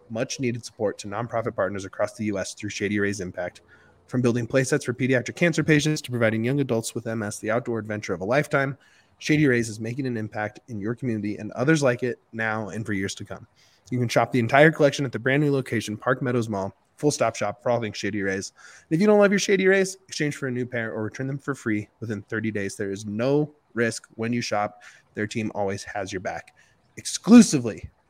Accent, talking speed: American, 235 wpm